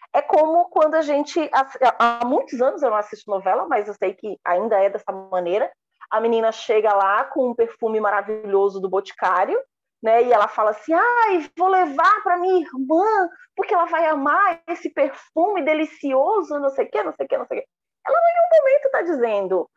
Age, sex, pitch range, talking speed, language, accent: 30-49, female, 205-325 Hz, 200 wpm, Portuguese, Brazilian